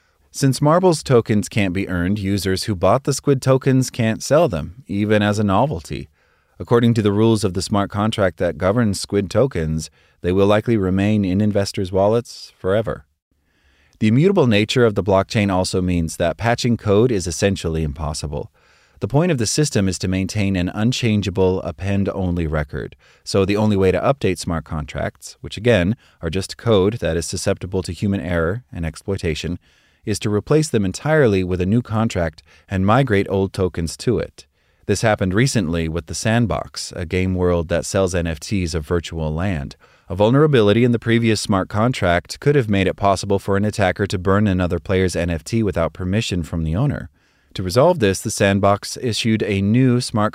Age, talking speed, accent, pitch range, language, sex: 30-49, 180 wpm, American, 85-110 Hz, English, male